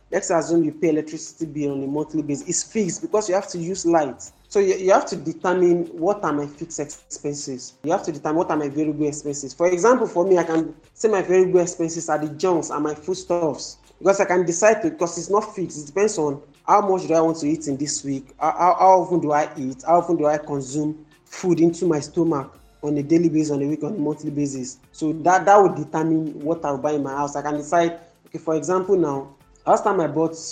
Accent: Nigerian